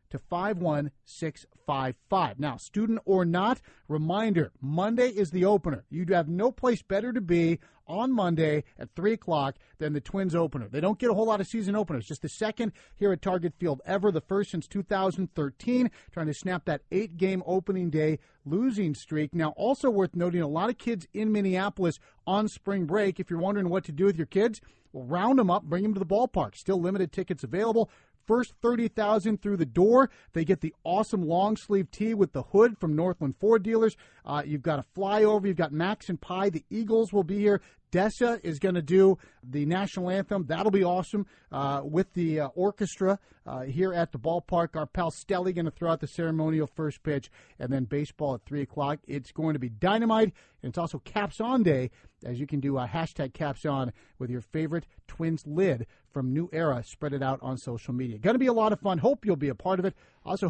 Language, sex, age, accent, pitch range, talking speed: English, male, 40-59, American, 150-200 Hz, 210 wpm